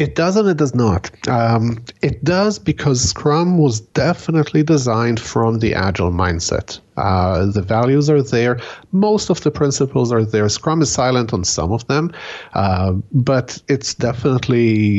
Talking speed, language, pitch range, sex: 155 wpm, English, 100-140 Hz, male